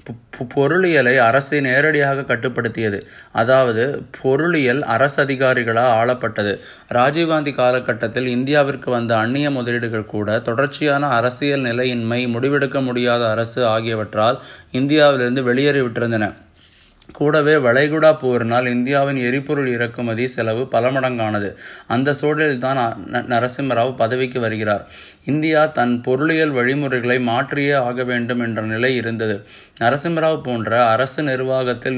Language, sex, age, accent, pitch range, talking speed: Tamil, male, 20-39, native, 115-140 Hz, 100 wpm